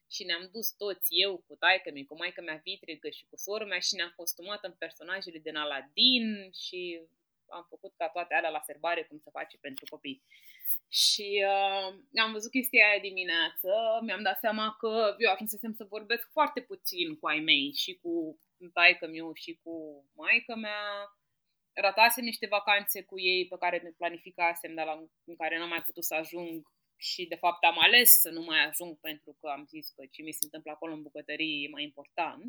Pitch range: 170-275 Hz